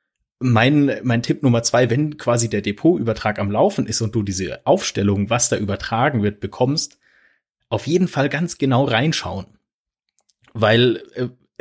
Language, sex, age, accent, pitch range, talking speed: German, male, 30-49, German, 110-135 Hz, 150 wpm